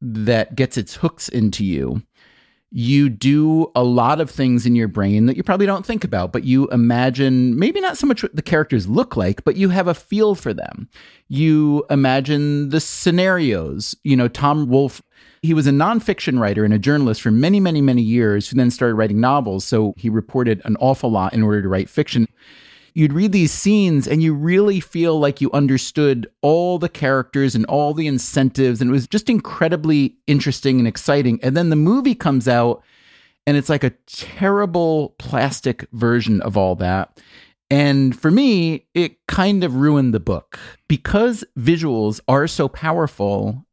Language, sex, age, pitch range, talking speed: English, male, 30-49, 120-160 Hz, 185 wpm